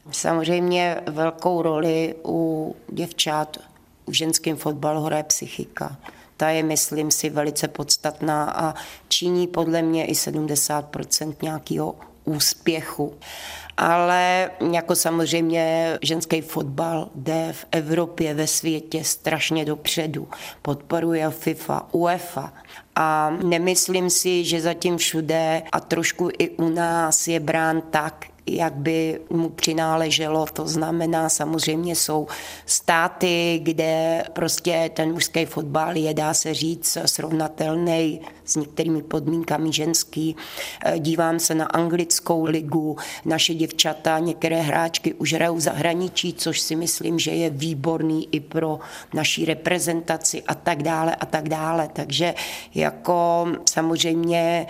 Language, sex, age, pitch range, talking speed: Czech, female, 30-49, 155-165 Hz, 115 wpm